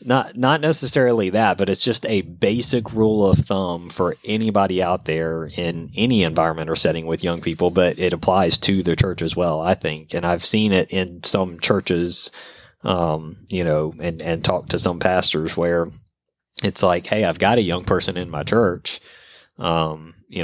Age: 30-49